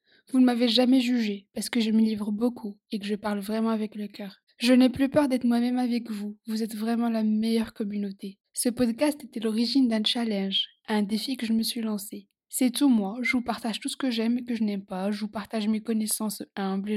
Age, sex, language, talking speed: 20-39, female, French, 235 wpm